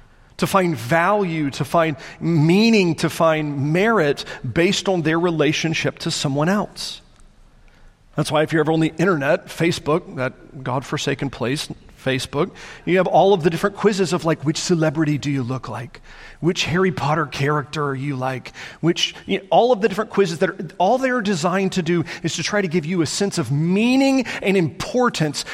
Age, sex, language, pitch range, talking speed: 40-59, male, English, 150-220 Hz, 185 wpm